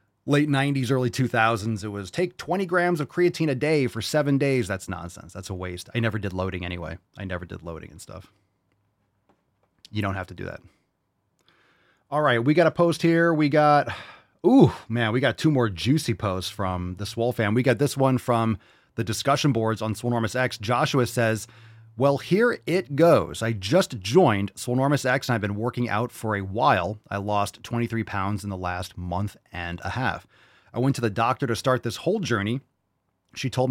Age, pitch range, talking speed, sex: 30-49, 100-130 Hz, 200 wpm, male